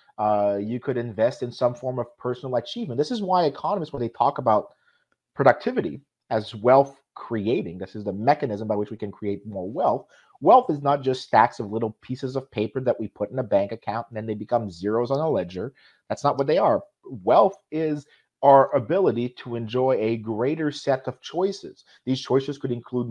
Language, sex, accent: English, male, American